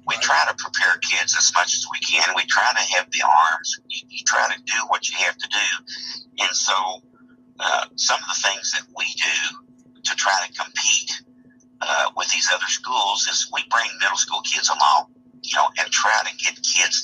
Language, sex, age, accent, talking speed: English, male, 50-69, American, 210 wpm